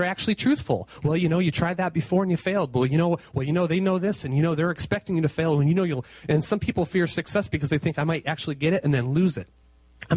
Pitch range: 125-170 Hz